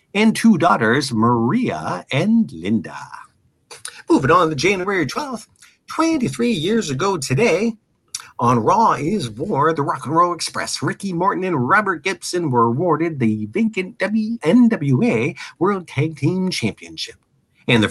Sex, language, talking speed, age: male, English, 135 wpm, 50-69